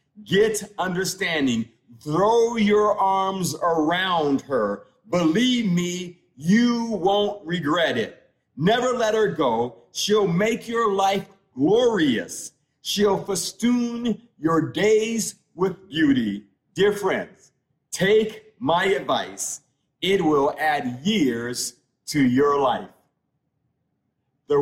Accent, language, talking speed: American, English, 100 wpm